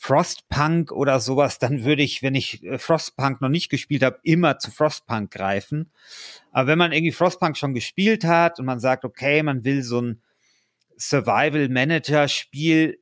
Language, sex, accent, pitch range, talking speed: German, male, German, 125-150 Hz, 155 wpm